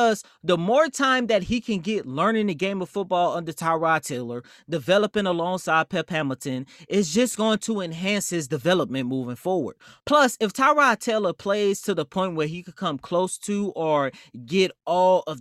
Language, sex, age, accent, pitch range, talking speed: English, male, 20-39, American, 145-210 Hz, 185 wpm